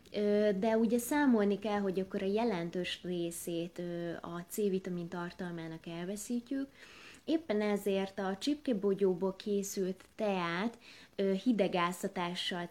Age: 20-39